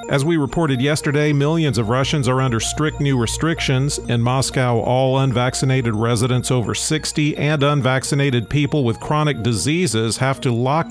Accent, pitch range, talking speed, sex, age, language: American, 120-150 Hz, 155 wpm, male, 50-69, English